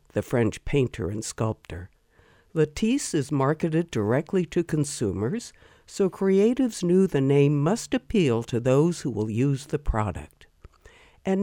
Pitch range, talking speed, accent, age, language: 125-190 Hz, 135 wpm, American, 60-79, English